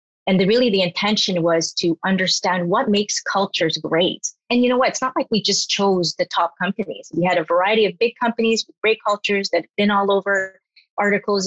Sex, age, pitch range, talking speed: female, 30-49, 180-225 Hz, 215 wpm